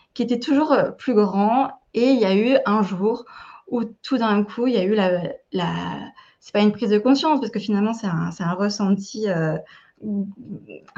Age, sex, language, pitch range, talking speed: 20-39, female, French, 195-235 Hz, 210 wpm